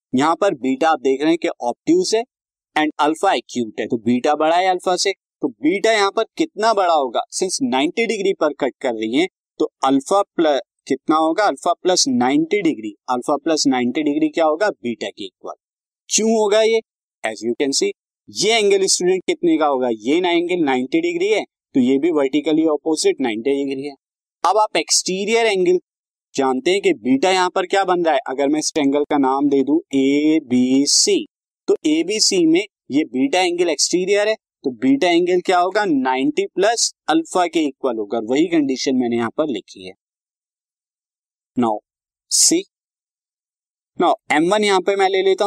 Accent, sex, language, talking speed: native, male, Hindi, 105 wpm